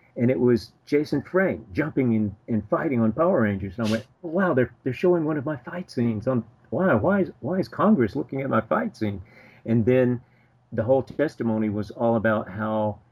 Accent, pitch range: American, 105-125 Hz